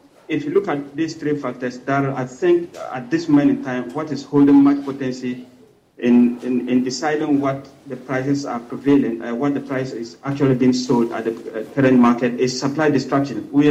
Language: English